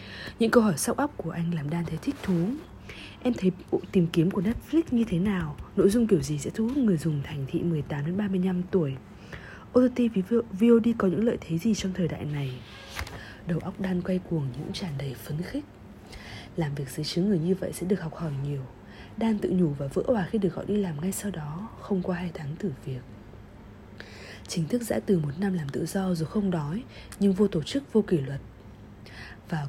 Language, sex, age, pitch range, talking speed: Vietnamese, female, 20-39, 150-205 Hz, 220 wpm